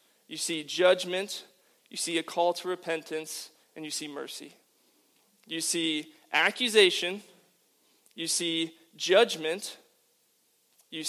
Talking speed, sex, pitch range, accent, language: 110 wpm, male, 160-190 Hz, American, English